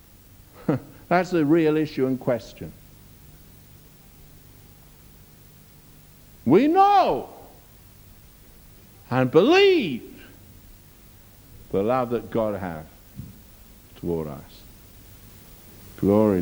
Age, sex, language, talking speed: 60-79, male, English, 65 wpm